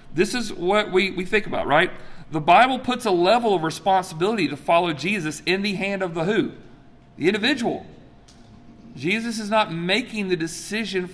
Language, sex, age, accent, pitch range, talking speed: English, male, 40-59, American, 155-215 Hz, 170 wpm